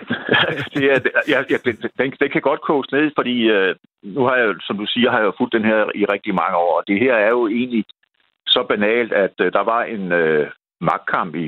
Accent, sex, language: native, male, Danish